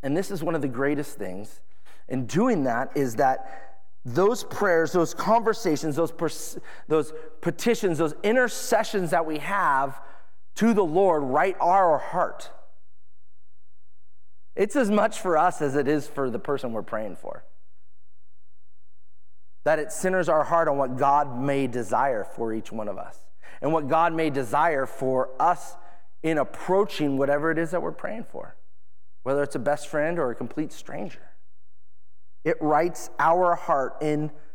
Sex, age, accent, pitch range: male, 30-49, American, 95-160 Hz